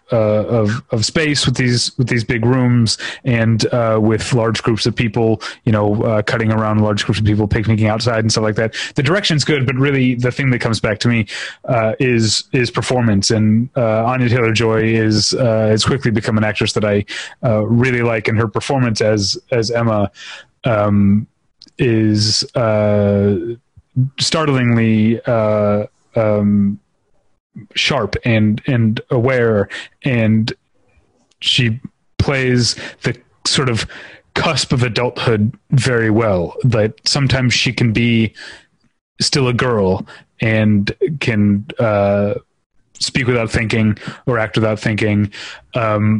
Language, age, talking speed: English, 30-49, 145 wpm